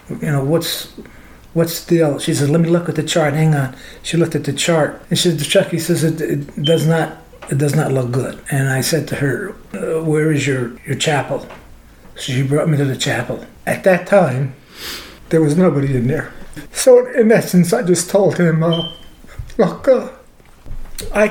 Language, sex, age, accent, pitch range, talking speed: English, male, 60-79, American, 155-200 Hz, 200 wpm